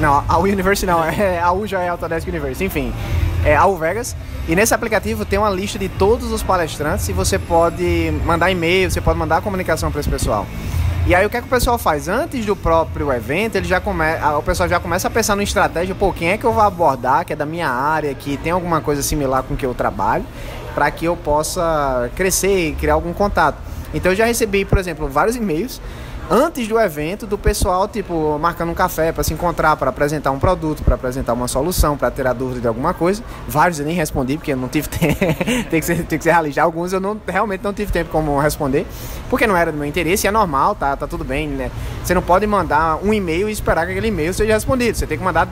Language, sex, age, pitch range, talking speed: Portuguese, male, 20-39, 145-195 Hz, 235 wpm